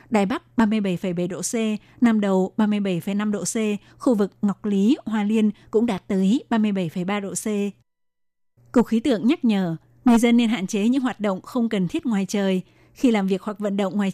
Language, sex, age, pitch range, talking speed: Vietnamese, female, 20-39, 195-230 Hz, 200 wpm